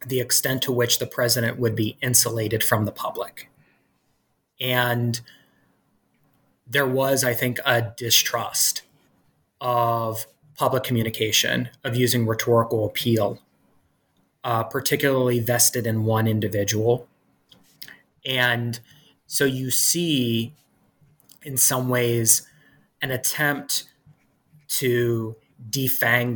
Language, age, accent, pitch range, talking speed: English, 30-49, American, 115-135 Hz, 100 wpm